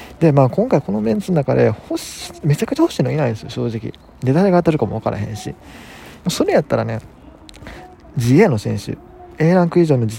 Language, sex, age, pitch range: Japanese, male, 20-39, 110-150 Hz